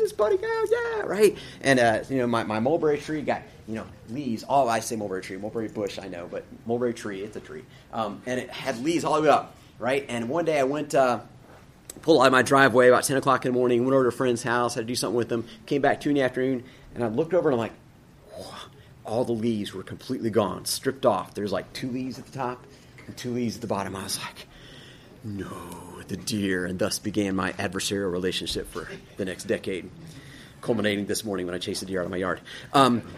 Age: 30-49